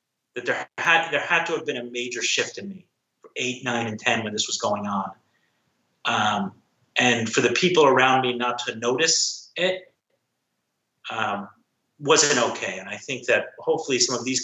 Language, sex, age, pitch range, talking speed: English, male, 30-49, 115-155 Hz, 185 wpm